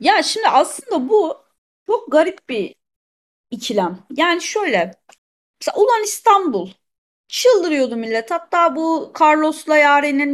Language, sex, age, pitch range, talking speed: Turkish, female, 30-49, 230-325 Hz, 110 wpm